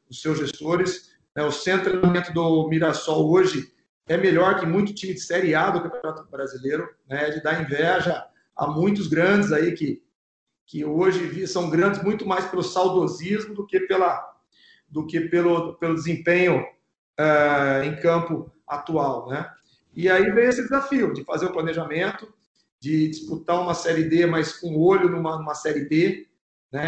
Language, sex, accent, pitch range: Portuguese, male, Brazilian, 155-185 Hz